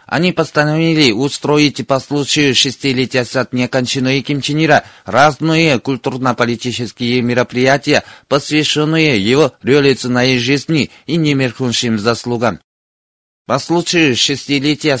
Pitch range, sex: 125-150 Hz, male